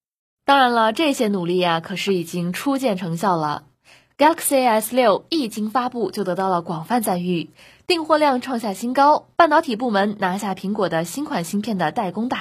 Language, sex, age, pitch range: Chinese, female, 20-39, 185-260 Hz